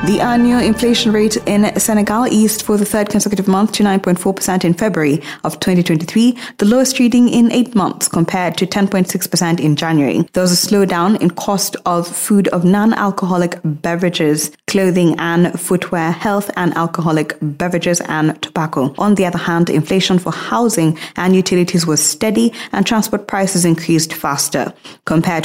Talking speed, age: 155 wpm, 20-39